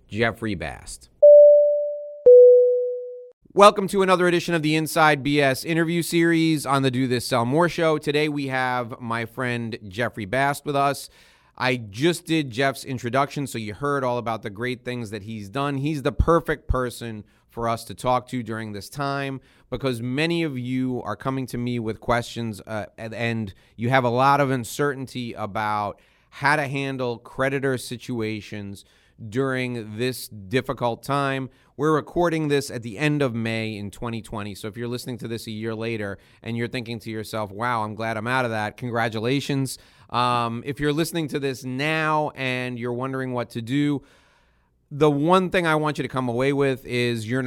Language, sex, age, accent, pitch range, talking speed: English, male, 30-49, American, 115-140 Hz, 180 wpm